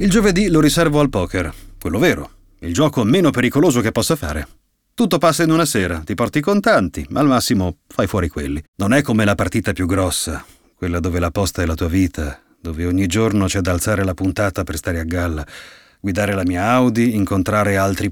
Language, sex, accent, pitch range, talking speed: Italian, male, native, 95-150 Hz, 210 wpm